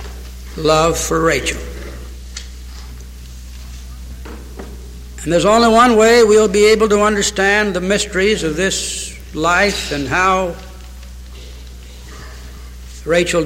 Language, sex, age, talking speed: English, male, 60-79, 95 wpm